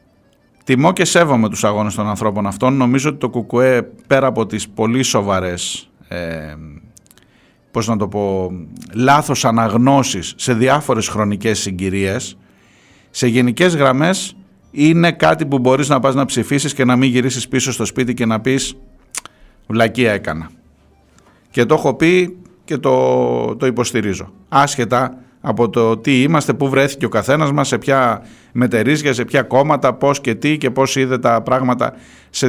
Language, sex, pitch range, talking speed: Greek, male, 105-135 Hz, 155 wpm